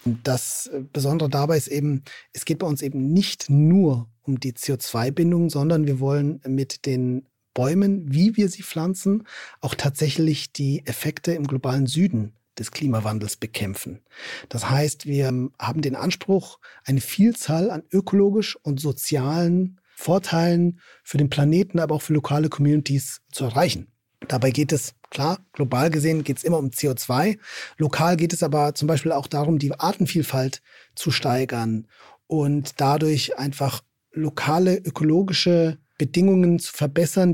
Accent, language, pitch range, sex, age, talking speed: German, German, 135-170 Hz, male, 40-59, 145 wpm